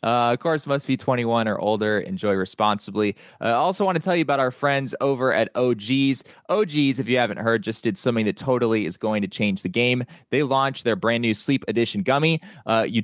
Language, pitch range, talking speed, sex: English, 100-130 Hz, 220 wpm, male